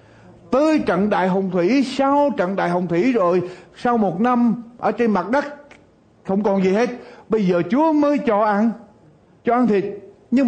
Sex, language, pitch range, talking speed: male, Vietnamese, 150-225 Hz, 185 wpm